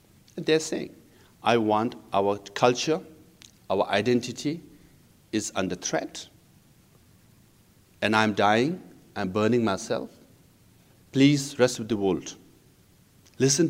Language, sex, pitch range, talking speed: English, male, 110-135 Hz, 100 wpm